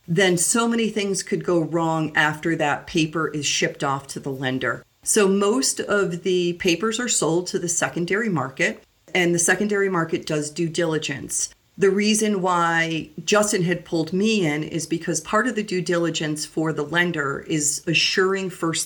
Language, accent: English, American